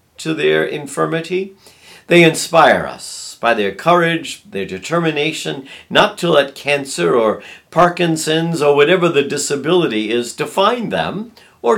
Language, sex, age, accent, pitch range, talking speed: English, male, 50-69, American, 125-180 Hz, 125 wpm